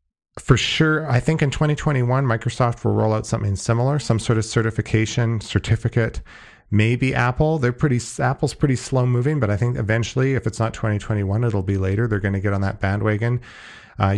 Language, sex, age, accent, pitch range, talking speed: English, male, 40-59, American, 95-120 Hz, 185 wpm